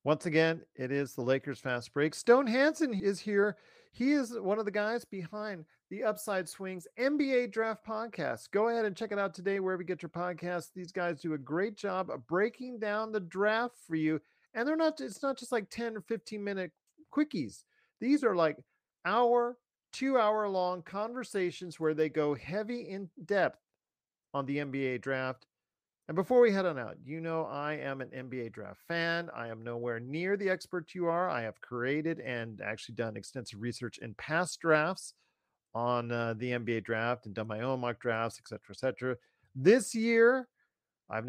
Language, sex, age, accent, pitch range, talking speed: English, male, 40-59, American, 125-200 Hz, 185 wpm